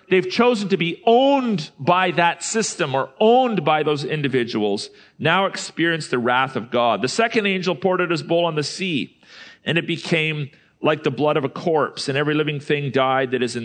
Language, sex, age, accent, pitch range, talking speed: English, male, 40-59, American, 155-200 Hz, 200 wpm